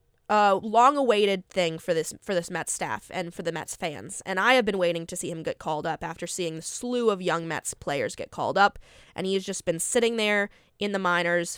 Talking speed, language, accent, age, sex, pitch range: 250 wpm, English, American, 20-39, female, 170-205 Hz